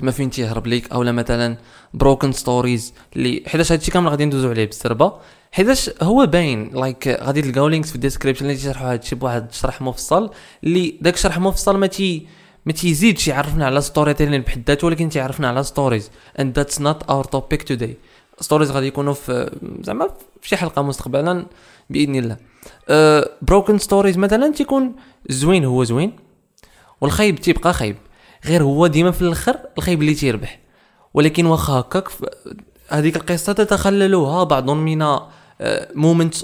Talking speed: 155 wpm